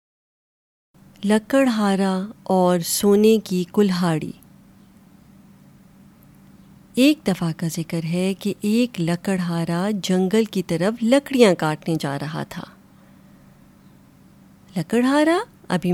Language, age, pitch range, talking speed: Urdu, 30-49, 175-230 Hz, 85 wpm